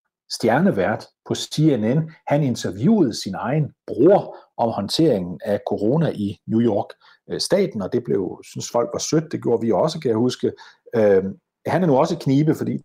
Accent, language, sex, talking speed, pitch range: native, Danish, male, 170 wpm, 105-145 Hz